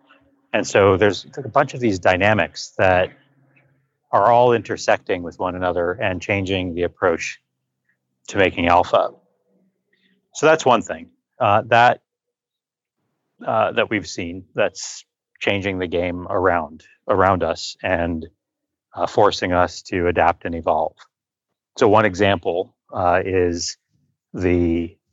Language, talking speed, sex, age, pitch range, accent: English, 125 wpm, male, 30-49, 85-100 Hz, American